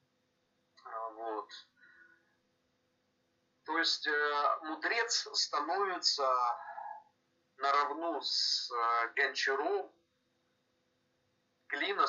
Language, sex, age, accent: Russian, male, 40-59, native